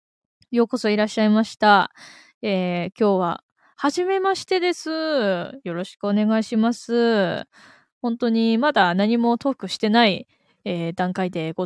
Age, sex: 20-39, female